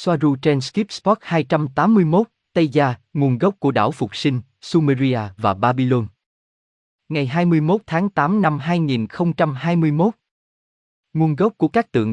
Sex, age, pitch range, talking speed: male, 20-39, 115-160 Hz, 125 wpm